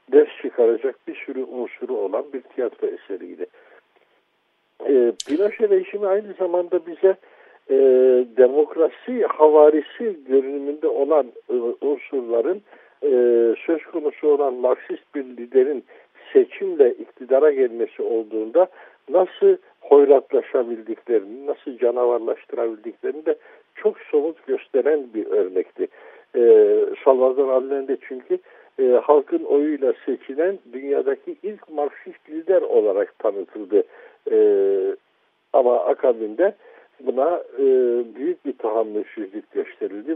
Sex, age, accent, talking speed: male, 60-79, native, 100 wpm